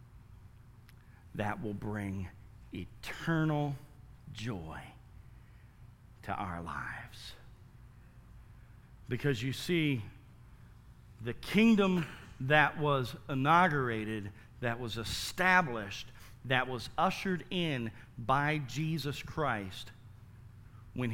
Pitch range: 110-135 Hz